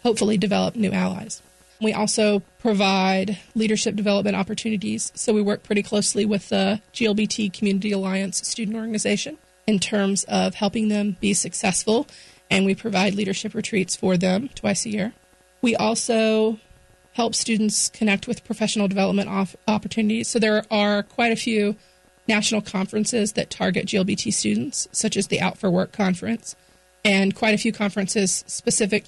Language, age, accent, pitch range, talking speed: English, 30-49, American, 190-215 Hz, 150 wpm